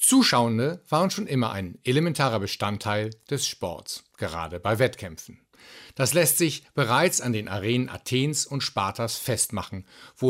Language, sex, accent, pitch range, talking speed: German, male, German, 110-145 Hz, 140 wpm